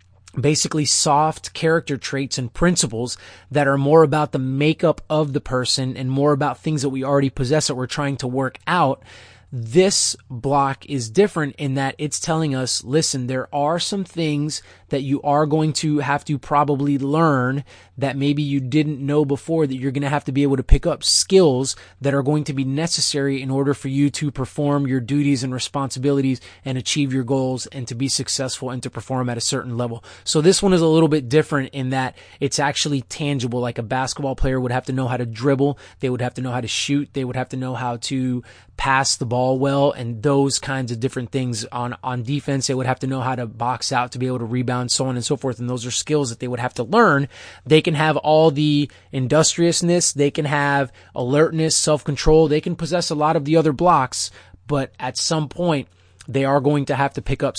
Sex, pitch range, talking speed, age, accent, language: male, 125-150 Hz, 225 wpm, 20-39, American, English